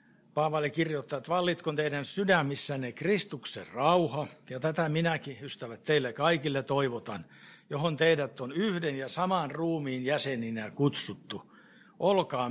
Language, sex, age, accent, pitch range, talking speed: Finnish, male, 60-79, native, 140-185 Hz, 120 wpm